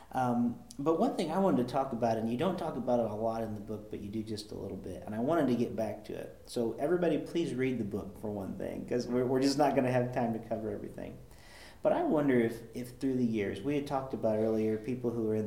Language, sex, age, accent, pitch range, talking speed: English, male, 40-59, American, 110-125 Hz, 285 wpm